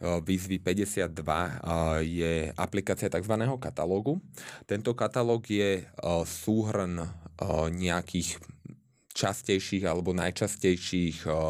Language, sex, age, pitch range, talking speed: Slovak, male, 20-39, 85-100 Hz, 75 wpm